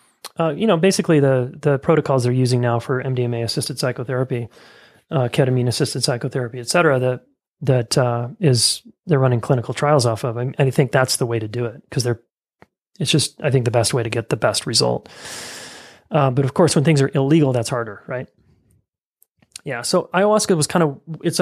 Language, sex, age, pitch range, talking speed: English, male, 30-49, 125-150 Hz, 200 wpm